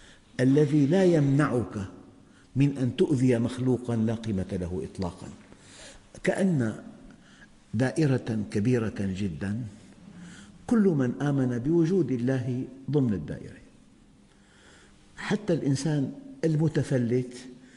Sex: male